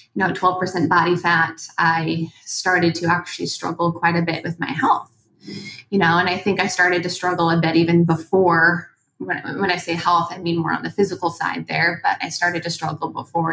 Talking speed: 215 wpm